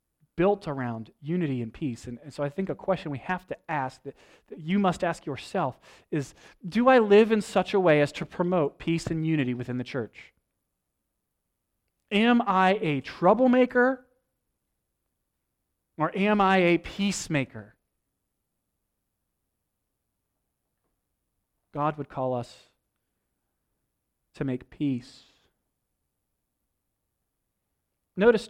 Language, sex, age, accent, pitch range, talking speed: English, male, 30-49, American, 125-180 Hz, 120 wpm